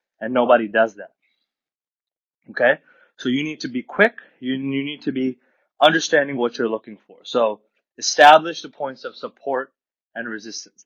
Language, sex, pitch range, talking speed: English, male, 120-150 Hz, 160 wpm